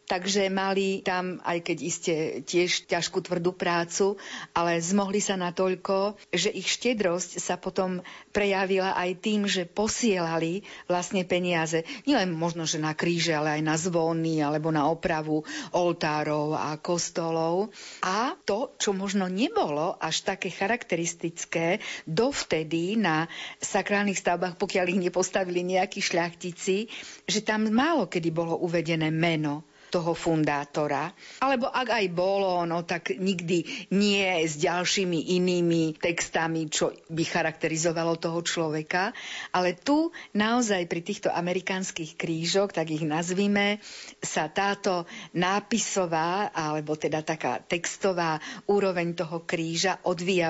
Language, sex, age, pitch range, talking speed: Slovak, female, 50-69, 165-195 Hz, 125 wpm